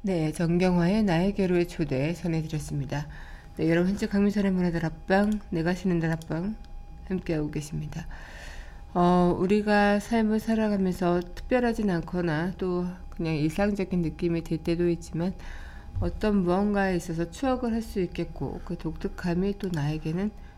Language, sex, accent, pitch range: Korean, female, native, 160-200 Hz